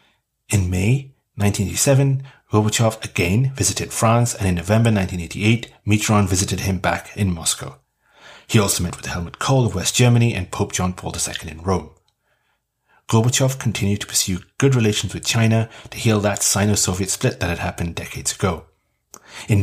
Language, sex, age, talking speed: English, male, 30-49, 160 wpm